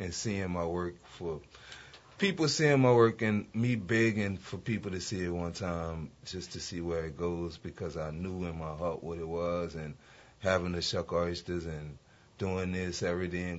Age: 30-49